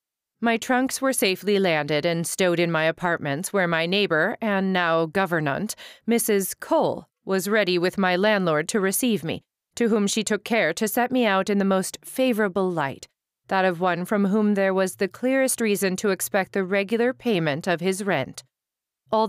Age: 40-59